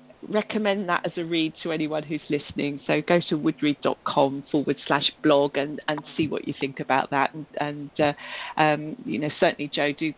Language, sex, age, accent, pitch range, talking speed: English, female, 40-59, British, 145-190 Hz, 195 wpm